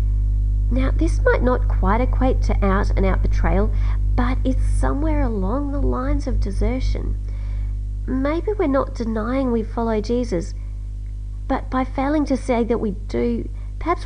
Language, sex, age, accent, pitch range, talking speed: English, female, 40-59, Australian, 100-130 Hz, 150 wpm